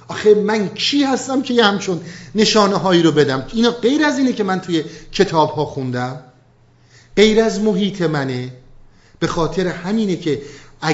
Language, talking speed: Persian, 160 wpm